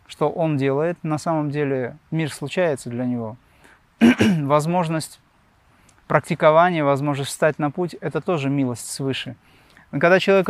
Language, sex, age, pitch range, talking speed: Russian, male, 30-49, 135-170 Hz, 135 wpm